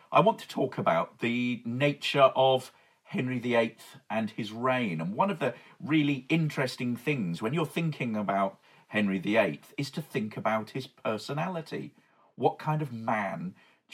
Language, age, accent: English, 40-59, British